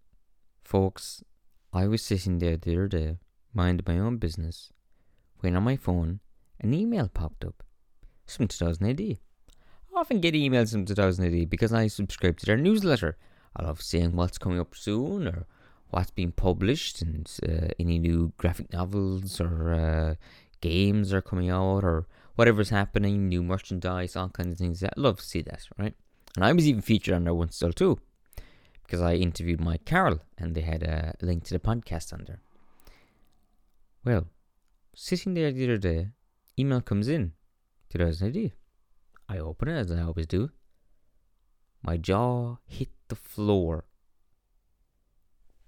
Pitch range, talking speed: 85-110 Hz, 160 wpm